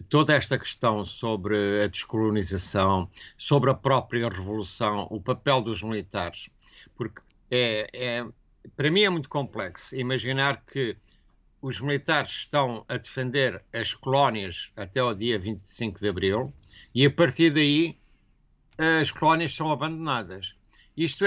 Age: 60-79